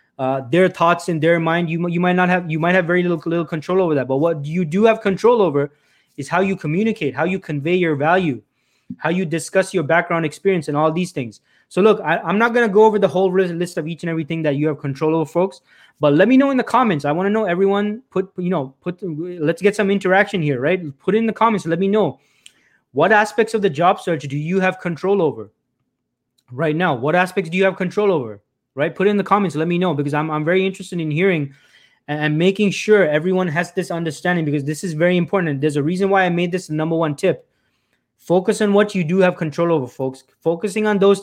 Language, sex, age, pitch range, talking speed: English, male, 20-39, 155-195 Hz, 245 wpm